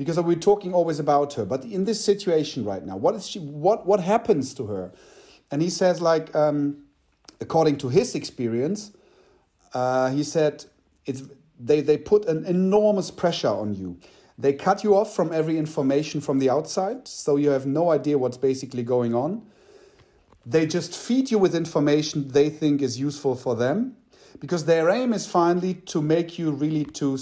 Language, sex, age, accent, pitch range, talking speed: English, male, 40-59, German, 135-170 Hz, 180 wpm